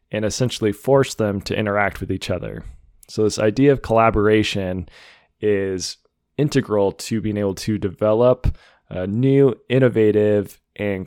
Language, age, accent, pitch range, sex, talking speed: English, 20-39, American, 100-115 Hz, male, 135 wpm